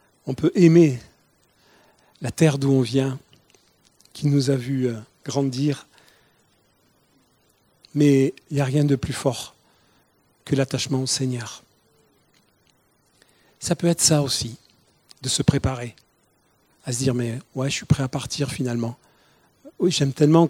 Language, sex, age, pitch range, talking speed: French, male, 40-59, 130-150 Hz, 135 wpm